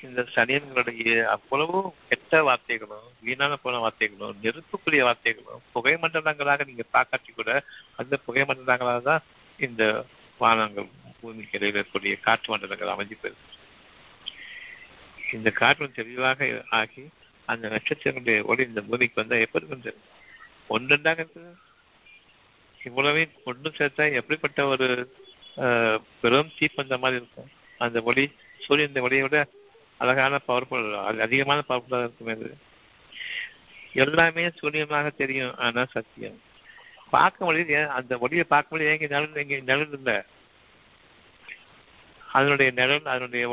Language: Tamil